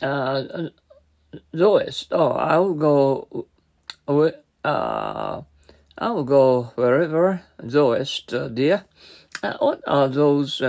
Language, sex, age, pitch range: Japanese, male, 50-69, 125-185 Hz